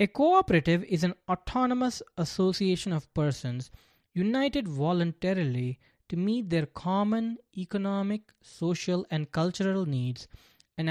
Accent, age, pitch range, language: Indian, 20-39, 140-195 Hz, English